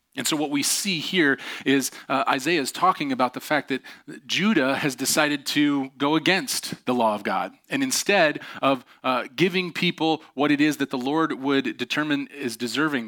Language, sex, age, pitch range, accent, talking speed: English, male, 30-49, 125-160 Hz, American, 185 wpm